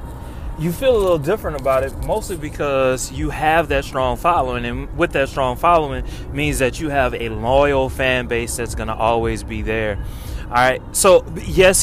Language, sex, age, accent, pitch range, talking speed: English, male, 20-39, American, 120-155 Hz, 190 wpm